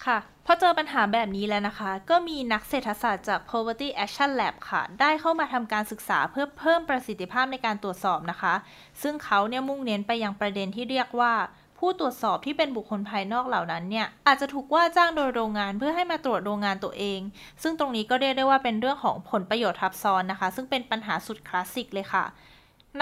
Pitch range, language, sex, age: 205-270 Hz, Thai, female, 10-29